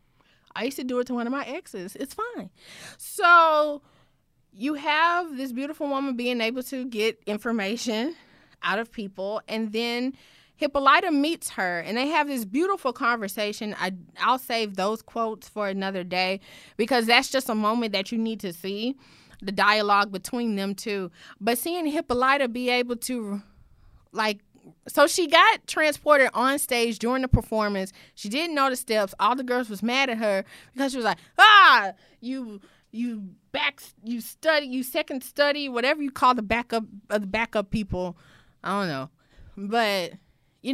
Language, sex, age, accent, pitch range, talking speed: English, female, 20-39, American, 210-275 Hz, 165 wpm